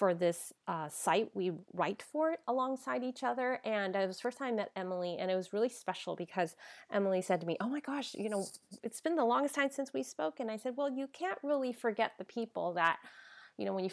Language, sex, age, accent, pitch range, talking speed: English, female, 30-49, American, 180-260 Hz, 245 wpm